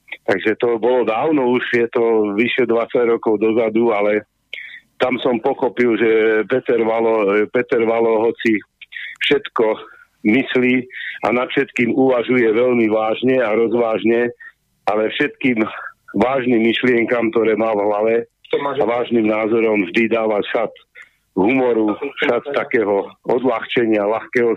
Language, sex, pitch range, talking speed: Slovak, male, 110-125 Hz, 120 wpm